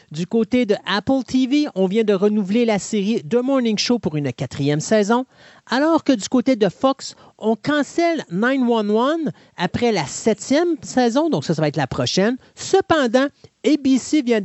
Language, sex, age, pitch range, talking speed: French, male, 40-59, 180-250 Hz, 170 wpm